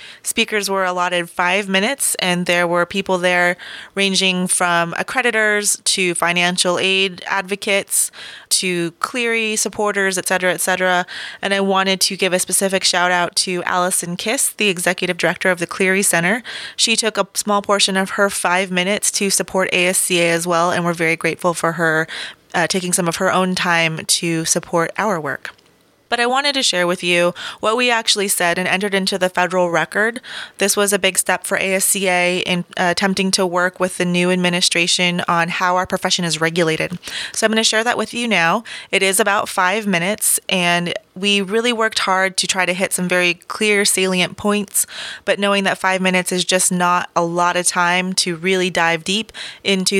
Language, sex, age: English, female, 20-39